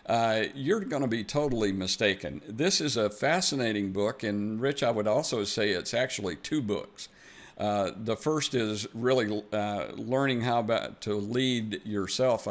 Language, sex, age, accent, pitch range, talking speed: English, male, 50-69, American, 105-130 Hz, 165 wpm